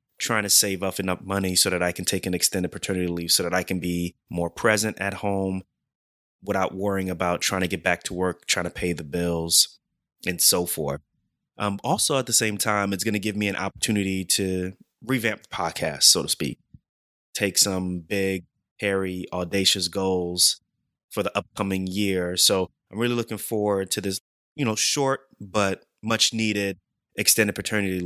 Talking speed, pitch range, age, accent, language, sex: 180 wpm, 90-105 Hz, 30-49, American, English, male